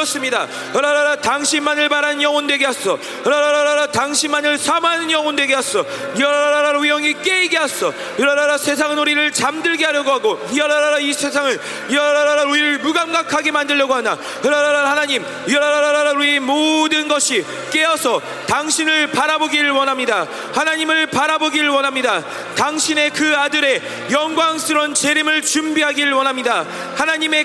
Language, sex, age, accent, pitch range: Korean, male, 40-59, native, 290-320 Hz